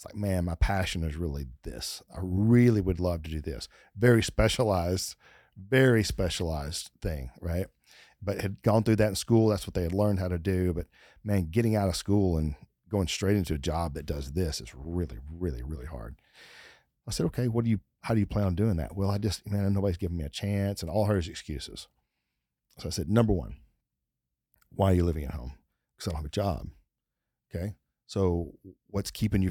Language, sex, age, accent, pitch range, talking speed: English, male, 40-59, American, 80-105 Hz, 210 wpm